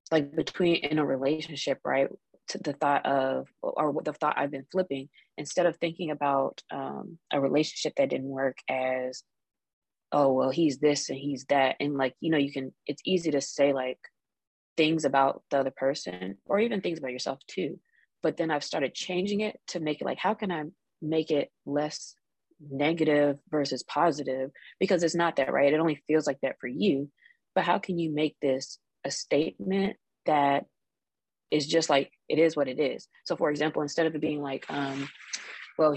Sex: female